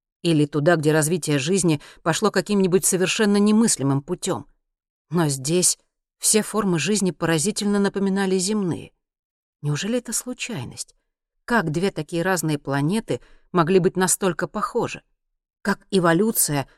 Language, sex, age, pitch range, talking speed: Russian, female, 40-59, 155-195 Hz, 115 wpm